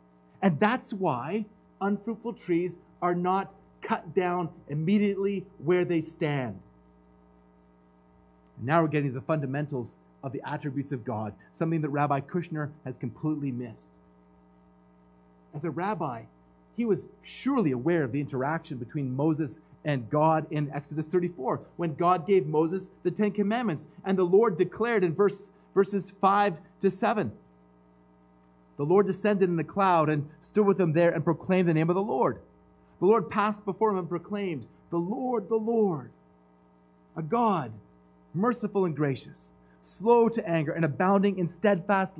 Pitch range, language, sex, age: 130-195 Hz, English, male, 30-49